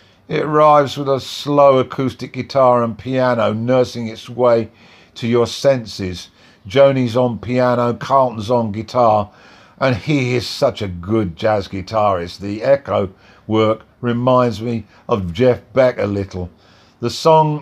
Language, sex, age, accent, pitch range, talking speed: English, male, 50-69, British, 110-130 Hz, 140 wpm